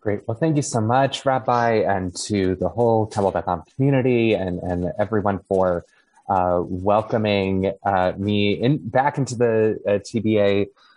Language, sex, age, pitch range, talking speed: English, male, 20-39, 95-110 Hz, 150 wpm